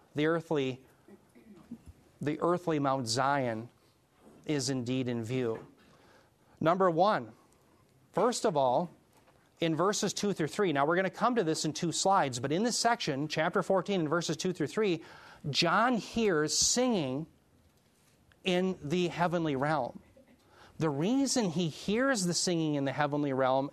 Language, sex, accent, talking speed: English, male, American, 145 wpm